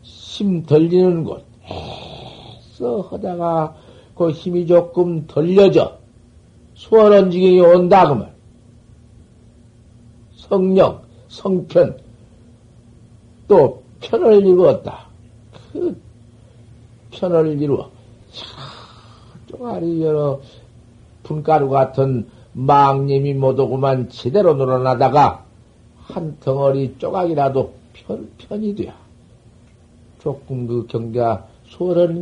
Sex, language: male, Korean